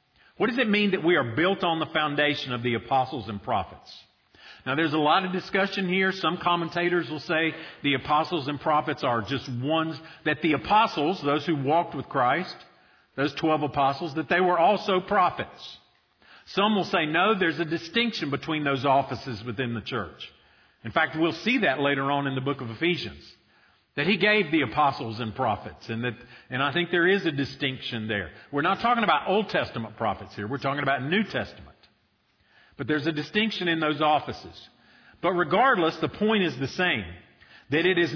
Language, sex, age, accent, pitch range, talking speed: English, male, 50-69, American, 130-175 Hz, 190 wpm